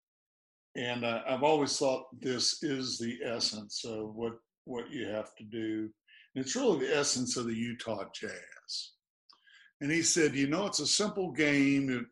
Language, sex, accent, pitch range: English, male, American, 115-155 Hz